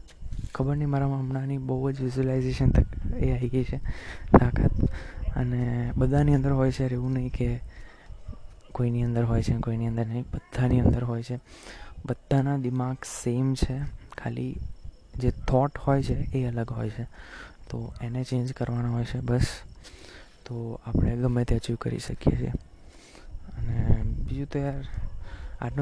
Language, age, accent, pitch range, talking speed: Gujarati, 20-39, native, 115-140 Hz, 100 wpm